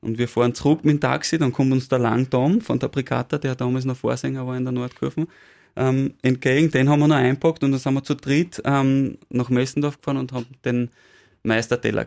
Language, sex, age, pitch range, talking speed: German, male, 20-39, 115-135 Hz, 220 wpm